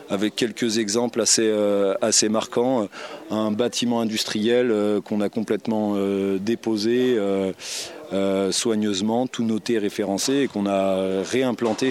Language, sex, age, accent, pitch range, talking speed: French, male, 30-49, French, 100-110 Hz, 125 wpm